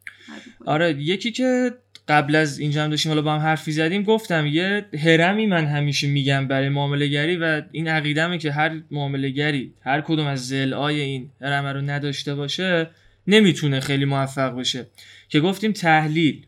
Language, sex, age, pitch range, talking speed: Persian, male, 20-39, 135-170 Hz, 155 wpm